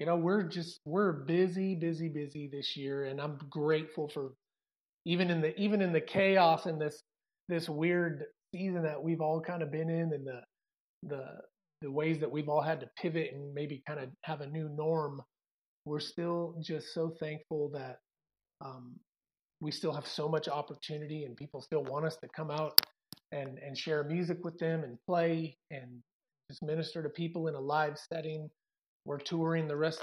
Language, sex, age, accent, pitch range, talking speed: English, male, 30-49, American, 145-170 Hz, 190 wpm